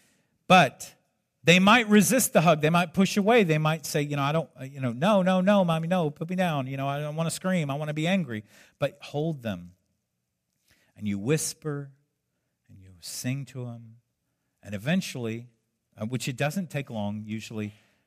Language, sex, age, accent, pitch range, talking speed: English, male, 50-69, American, 100-145 Hz, 195 wpm